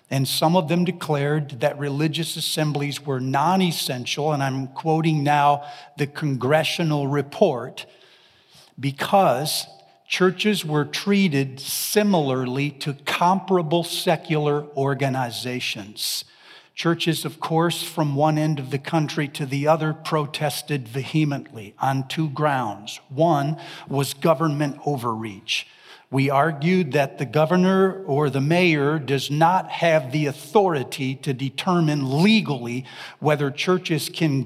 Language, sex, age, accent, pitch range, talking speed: English, male, 50-69, American, 140-170 Hz, 115 wpm